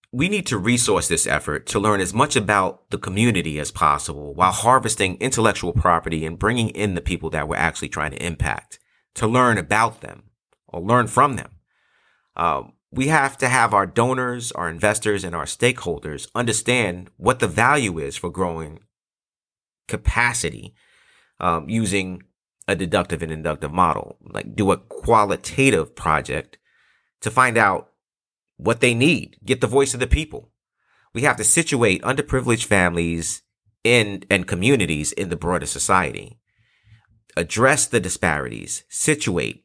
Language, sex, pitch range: English, male, 85-120 Hz